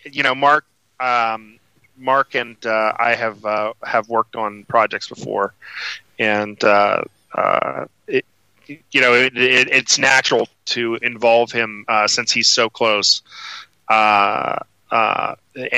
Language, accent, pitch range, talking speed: English, American, 105-115 Hz, 135 wpm